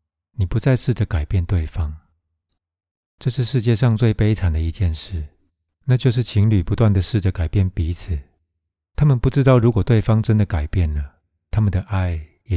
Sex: male